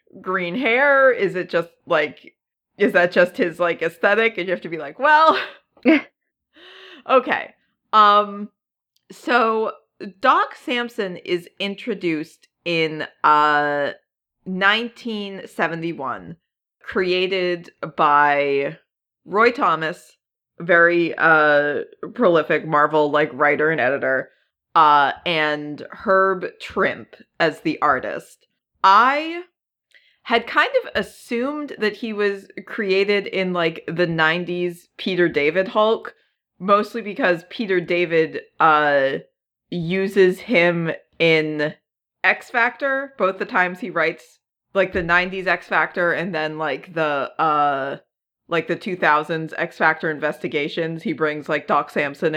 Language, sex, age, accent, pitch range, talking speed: English, female, 30-49, American, 160-215 Hz, 110 wpm